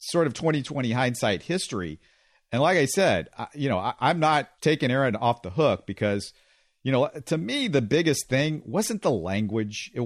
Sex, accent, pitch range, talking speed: male, American, 110-155 Hz, 180 wpm